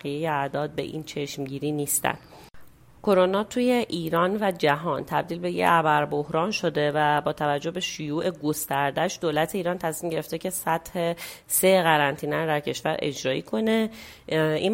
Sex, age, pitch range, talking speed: female, 30-49, 150-180 Hz, 150 wpm